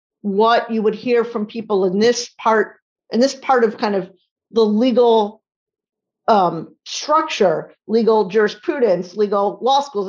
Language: English